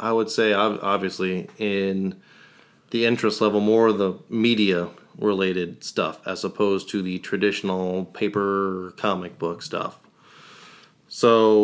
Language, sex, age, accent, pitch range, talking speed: English, male, 30-49, American, 95-110 Hz, 120 wpm